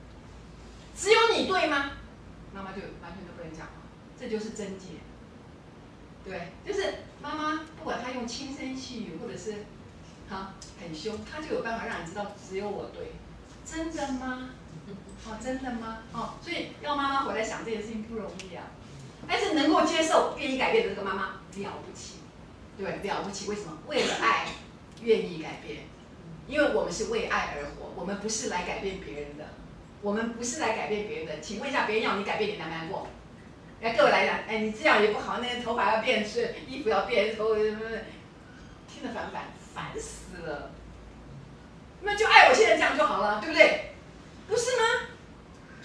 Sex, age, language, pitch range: female, 40-59, Chinese, 210-300 Hz